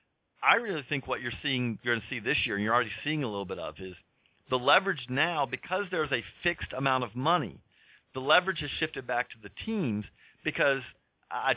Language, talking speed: English, 215 wpm